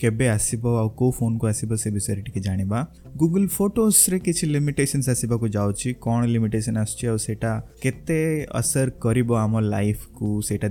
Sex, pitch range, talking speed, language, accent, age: male, 105-125 Hz, 145 wpm, Hindi, native, 20-39